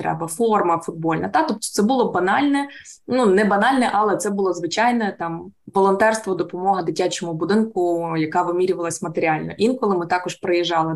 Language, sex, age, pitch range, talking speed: Ukrainian, female, 20-39, 175-220 Hz, 150 wpm